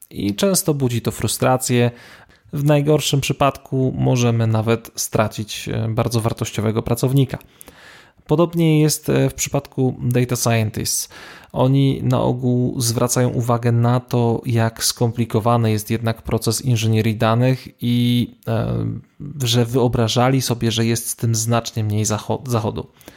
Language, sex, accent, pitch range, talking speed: Polish, male, native, 115-135 Hz, 115 wpm